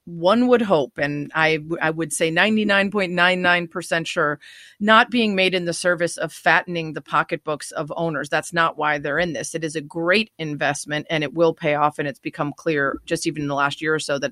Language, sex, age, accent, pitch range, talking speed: English, female, 30-49, American, 155-190 Hz, 220 wpm